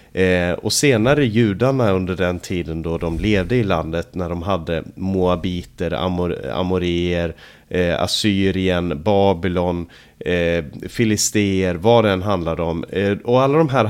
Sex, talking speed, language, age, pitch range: male, 135 wpm, Swedish, 30-49, 90-115 Hz